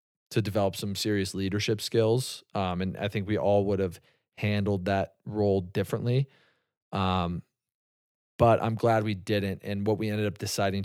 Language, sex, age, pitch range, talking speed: English, male, 20-39, 95-110 Hz, 165 wpm